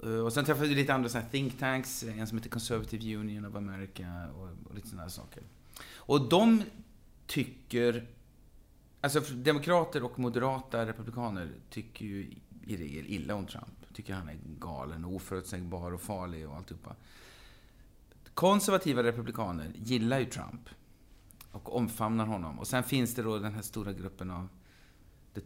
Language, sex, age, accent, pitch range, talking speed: Swedish, male, 30-49, native, 95-125 Hz, 155 wpm